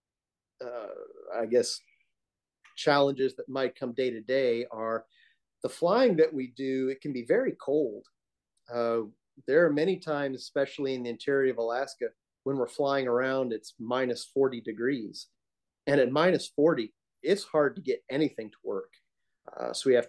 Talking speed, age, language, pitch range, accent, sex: 165 wpm, 40-59, English, 120-150 Hz, American, male